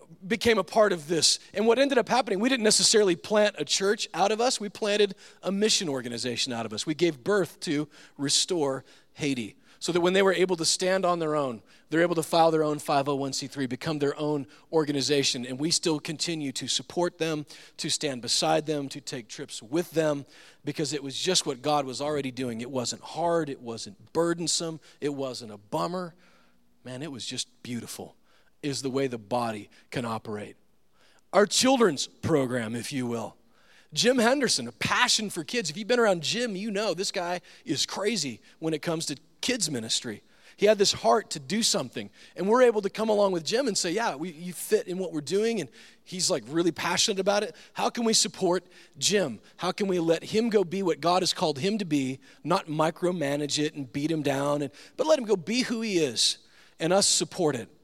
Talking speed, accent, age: 210 wpm, American, 40-59